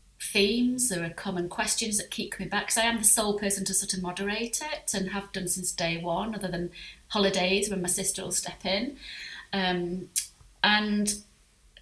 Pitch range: 180-210 Hz